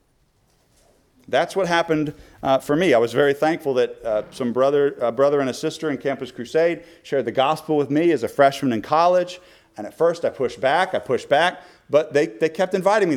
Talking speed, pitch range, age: 215 wpm, 130-180 Hz, 40-59